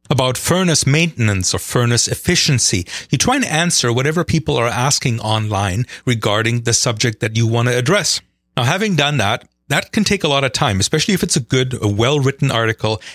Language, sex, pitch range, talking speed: English, male, 110-145 Hz, 185 wpm